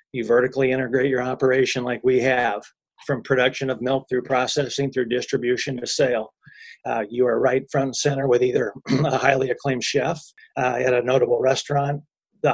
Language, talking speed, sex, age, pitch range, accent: English, 175 wpm, male, 40-59, 125-140 Hz, American